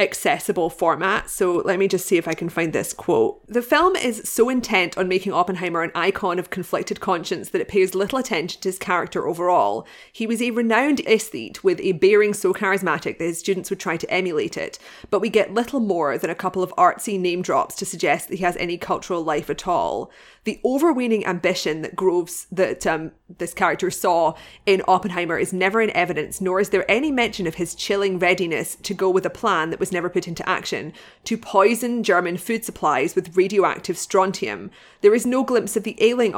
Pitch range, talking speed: 180-215 Hz, 210 wpm